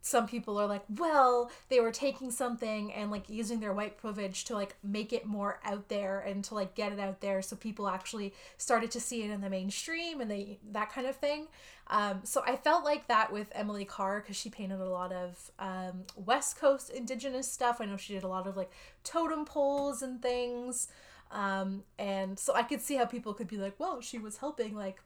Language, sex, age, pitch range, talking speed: English, female, 20-39, 200-250 Hz, 225 wpm